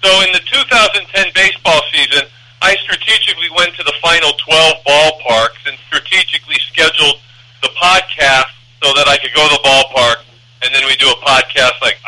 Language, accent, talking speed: English, American, 170 wpm